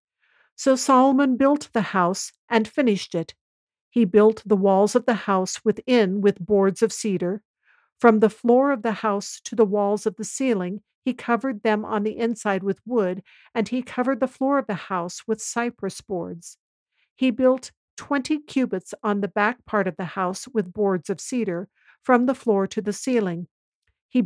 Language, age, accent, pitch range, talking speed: English, 50-69, American, 195-240 Hz, 180 wpm